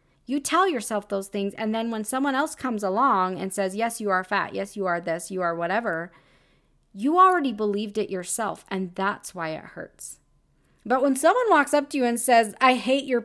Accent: American